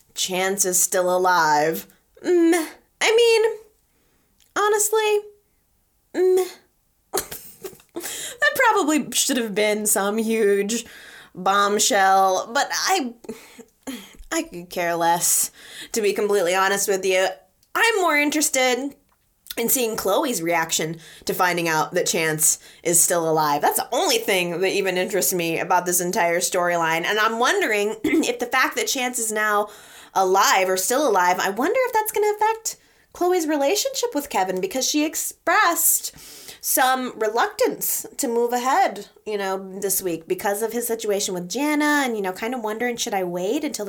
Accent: American